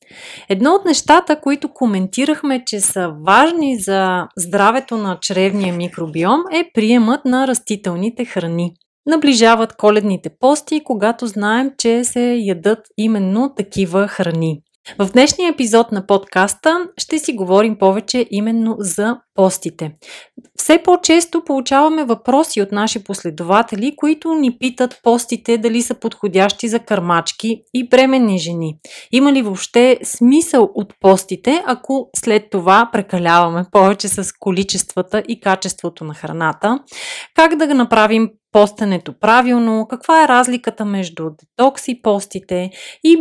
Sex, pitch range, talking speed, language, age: female, 195-255 Hz, 125 wpm, Bulgarian, 30-49